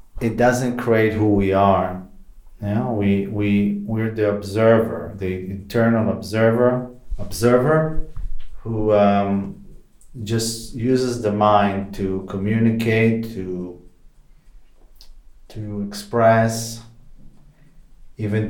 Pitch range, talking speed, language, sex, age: 100-115 Hz, 95 wpm, English, male, 40-59